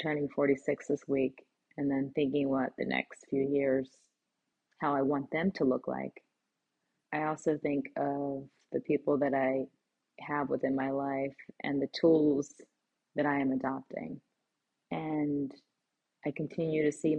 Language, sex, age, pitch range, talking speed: English, female, 30-49, 140-155 Hz, 150 wpm